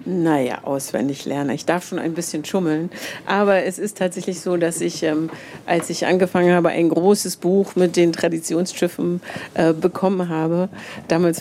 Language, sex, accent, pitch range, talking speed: German, female, German, 170-200 Hz, 165 wpm